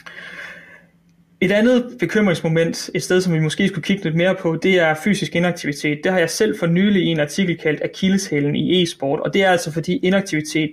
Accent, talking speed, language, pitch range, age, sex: native, 195 wpm, Danish, 155-180 Hz, 30-49, male